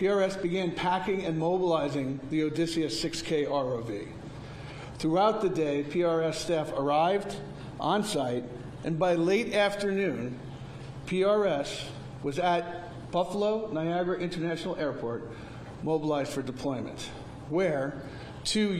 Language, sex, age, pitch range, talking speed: English, male, 50-69, 135-180 Hz, 105 wpm